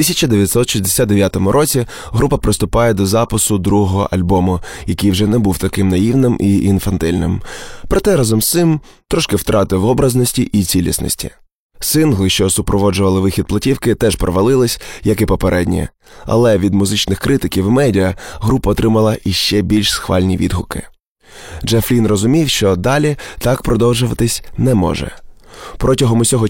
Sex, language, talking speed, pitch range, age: male, Ukrainian, 130 wpm, 95-120 Hz, 20-39